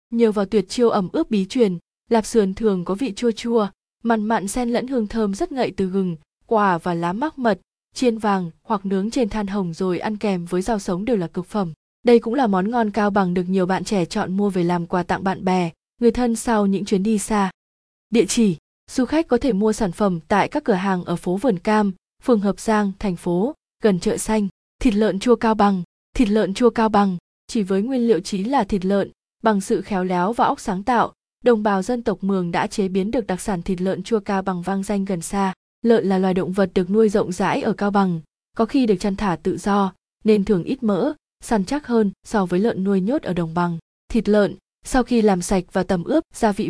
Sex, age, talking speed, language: female, 20-39, 245 wpm, Vietnamese